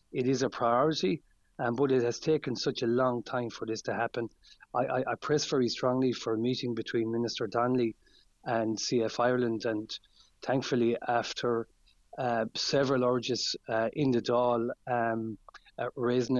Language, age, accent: English, 30-49, Irish